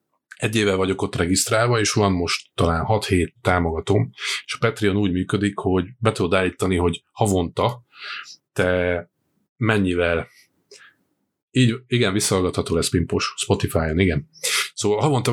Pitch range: 90-110 Hz